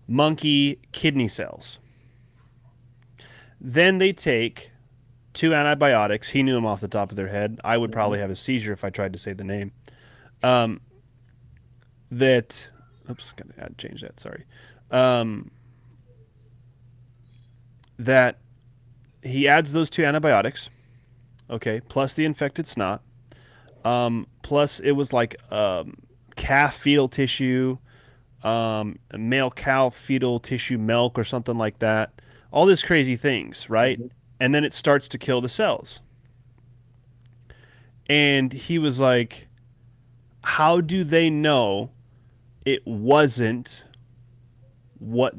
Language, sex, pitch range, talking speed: English, male, 120-135 Hz, 125 wpm